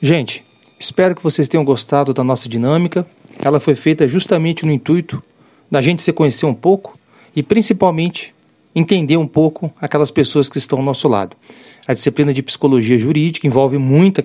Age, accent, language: 40-59, Brazilian, Portuguese